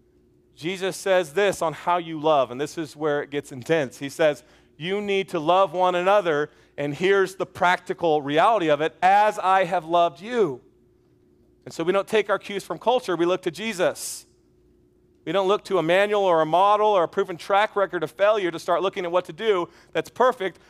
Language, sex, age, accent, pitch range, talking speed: English, male, 40-59, American, 185-245 Hz, 210 wpm